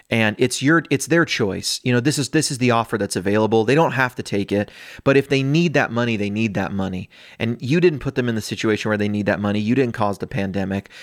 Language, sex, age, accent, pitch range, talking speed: English, male, 30-49, American, 105-140 Hz, 270 wpm